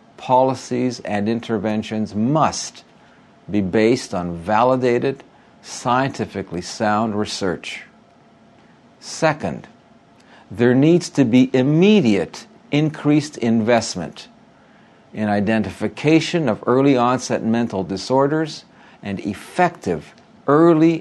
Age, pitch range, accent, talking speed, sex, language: 60-79, 105-140 Hz, American, 85 wpm, male, English